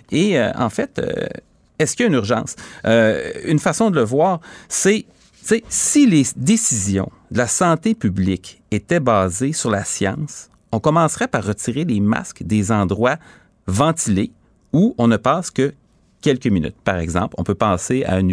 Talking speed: 170 wpm